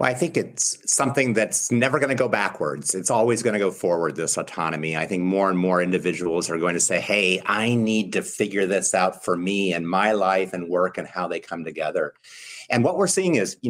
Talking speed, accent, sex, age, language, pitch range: 235 wpm, American, male, 50-69, English, 95-130 Hz